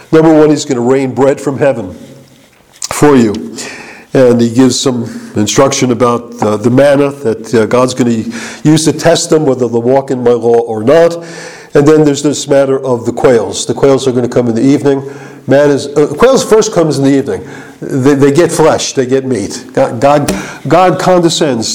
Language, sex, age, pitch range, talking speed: English, male, 50-69, 125-180 Hz, 200 wpm